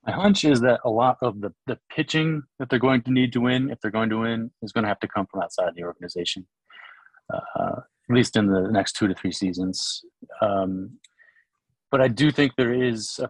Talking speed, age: 225 wpm, 30-49